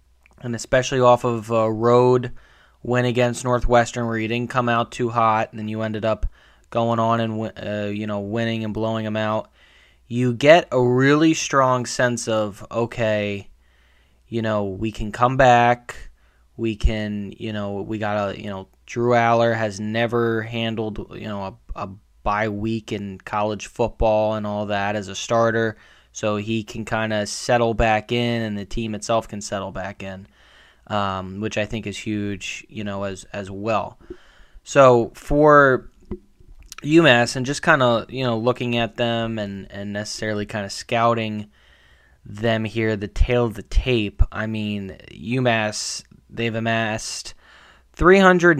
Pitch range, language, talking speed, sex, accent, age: 105-120 Hz, English, 165 wpm, male, American, 20-39